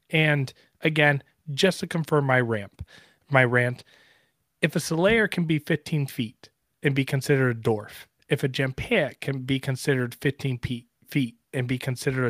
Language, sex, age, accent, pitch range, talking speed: English, male, 30-49, American, 120-150 Hz, 155 wpm